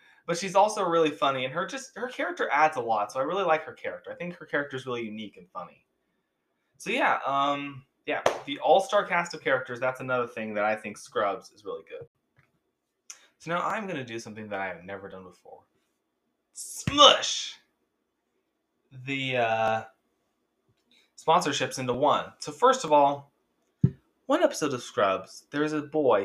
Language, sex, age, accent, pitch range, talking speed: English, male, 20-39, American, 120-170 Hz, 175 wpm